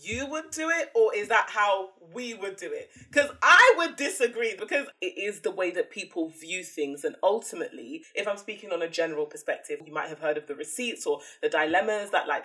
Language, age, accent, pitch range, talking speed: English, 20-39, British, 170-280 Hz, 220 wpm